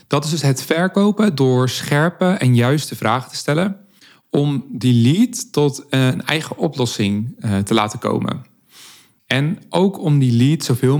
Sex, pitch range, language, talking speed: male, 110-135 Hz, Dutch, 155 wpm